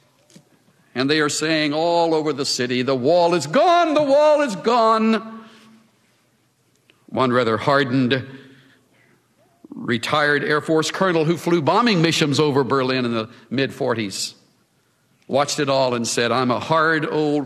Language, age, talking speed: English, 60-79, 140 wpm